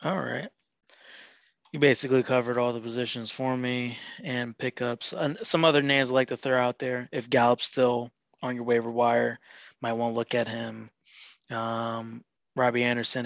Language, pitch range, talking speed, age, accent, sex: English, 115-135 Hz, 170 wpm, 20-39, American, male